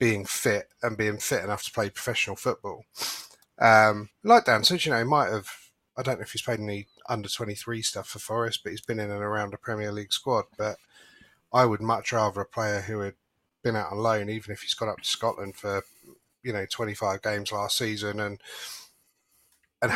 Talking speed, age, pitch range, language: 205 wpm, 30-49, 100-115 Hz, English